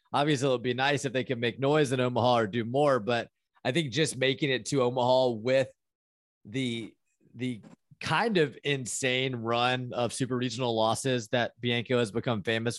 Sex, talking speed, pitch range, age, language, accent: male, 180 wpm, 120-150 Hz, 30-49, English, American